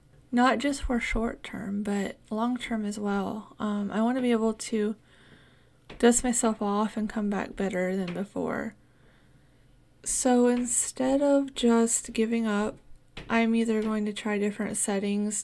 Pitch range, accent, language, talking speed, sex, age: 205-235 Hz, American, English, 150 wpm, female, 20-39